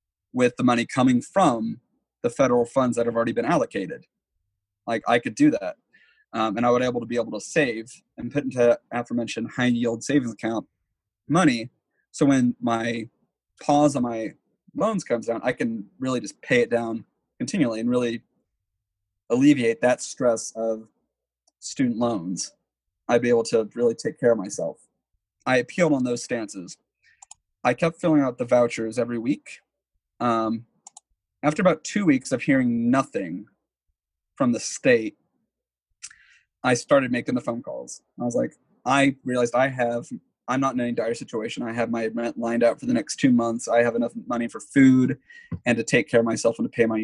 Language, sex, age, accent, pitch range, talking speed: English, male, 30-49, American, 115-135 Hz, 180 wpm